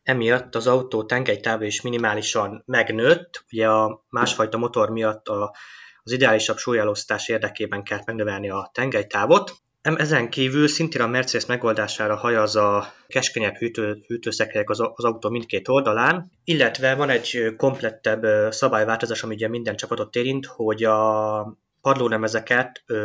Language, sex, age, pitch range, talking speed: Hungarian, male, 20-39, 105-125 Hz, 130 wpm